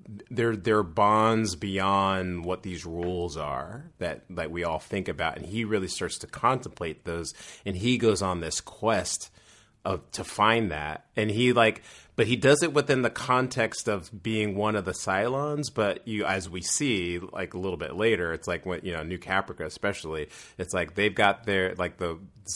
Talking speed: 190 wpm